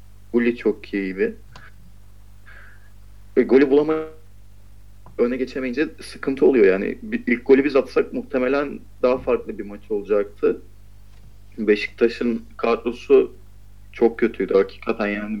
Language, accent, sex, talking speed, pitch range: Turkish, native, male, 110 wpm, 100-130 Hz